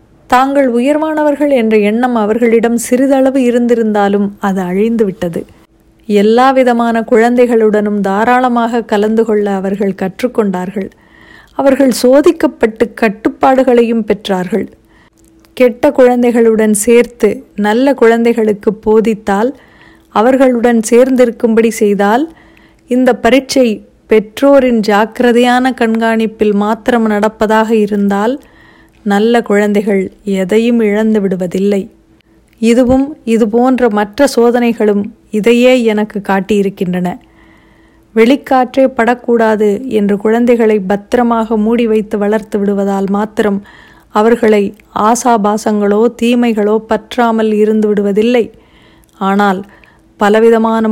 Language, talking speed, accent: Tamil, 80 wpm, native